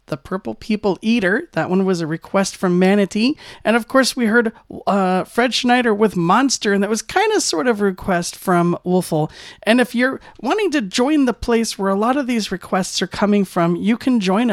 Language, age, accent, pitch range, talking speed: English, 40-59, American, 185-235 Hz, 215 wpm